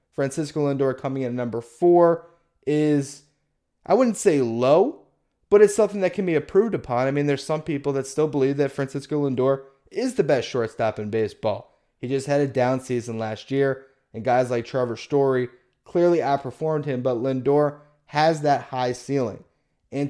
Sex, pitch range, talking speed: male, 130-165 Hz, 180 wpm